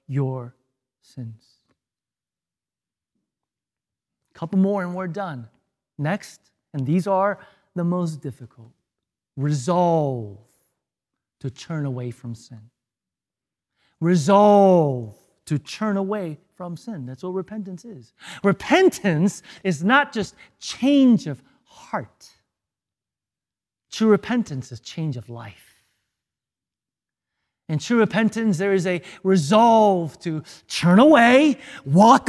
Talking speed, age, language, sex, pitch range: 100 wpm, 30-49, English, male, 140-220 Hz